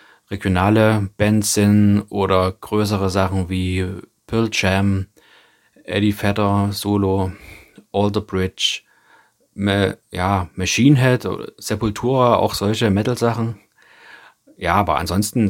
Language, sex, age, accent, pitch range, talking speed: German, male, 30-49, German, 95-105 Hz, 95 wpm